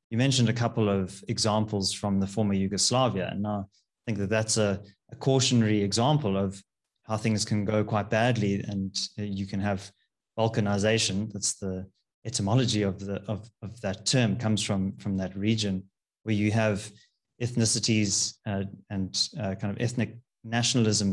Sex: male